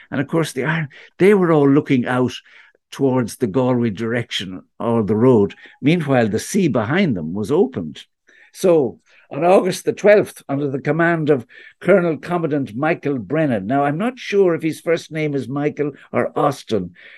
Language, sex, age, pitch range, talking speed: English, male, 60-79, 120-155 Hz, 170 wpm